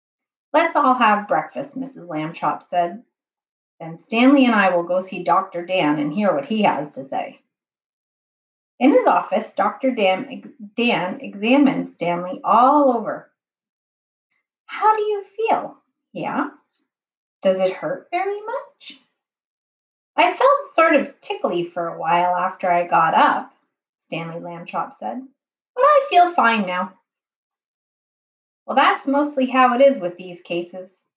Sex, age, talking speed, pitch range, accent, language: female, 30-49, 140 wpm, 180-280 Hz, American, English